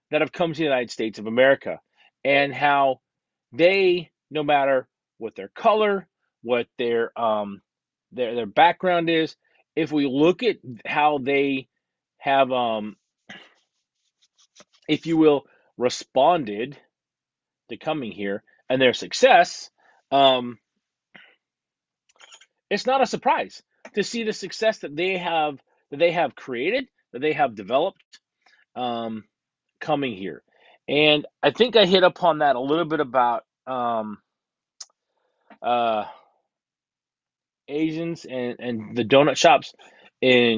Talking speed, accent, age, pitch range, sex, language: 125 wpm, American, 30-49, 125-170 Hz, male, English